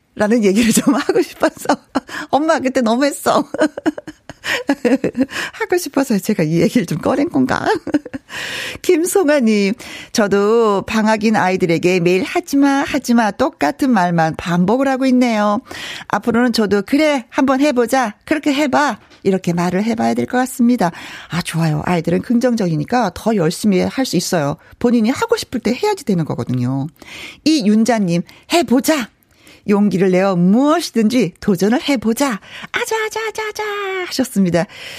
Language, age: Korean, 40-59